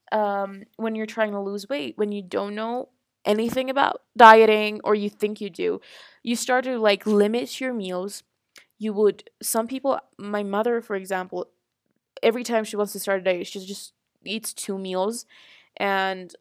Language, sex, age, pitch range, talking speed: Persian, female, 20-39, 205-235 Hz, 175 wpm